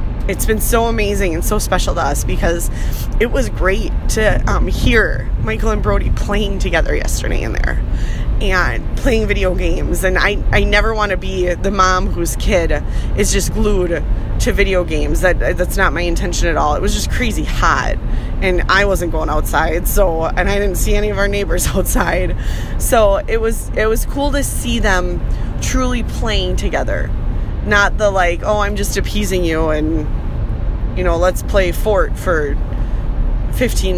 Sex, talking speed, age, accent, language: female, 175 wpm, 20-39, American, English